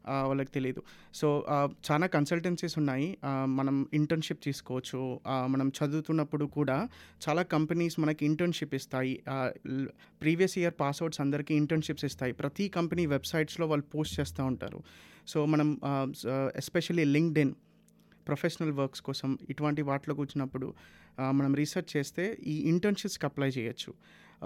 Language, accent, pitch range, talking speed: Telugu, native, 135-155 Hz, 120 wpm